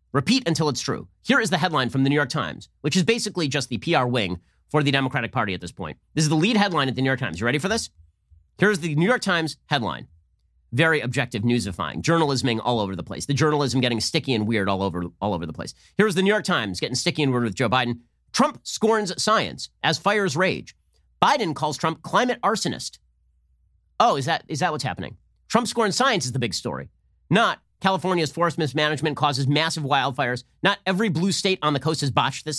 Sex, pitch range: male, 115-175 Hz